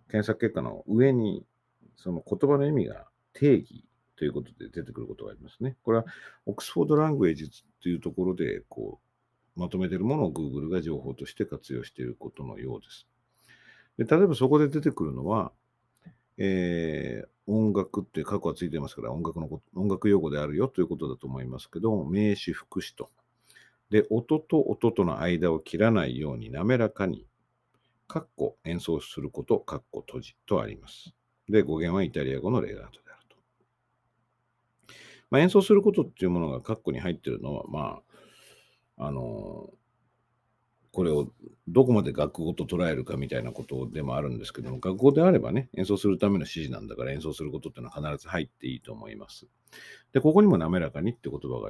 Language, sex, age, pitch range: Japanese, male, 50-69, 85-130 Hz